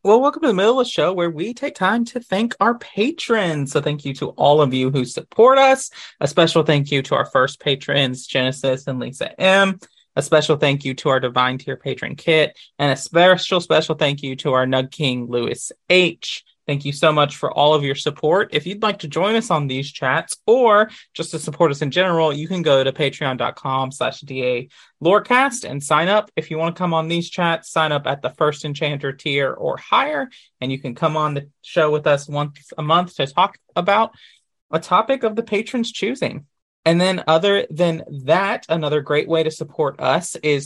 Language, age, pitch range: English, 20-39, 135-175 Hz